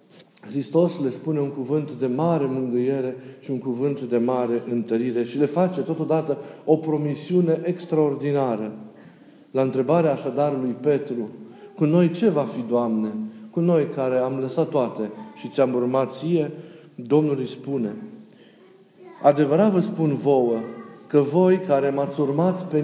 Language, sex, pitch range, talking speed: Romanian, male, 125-160 Hz, 140 wpm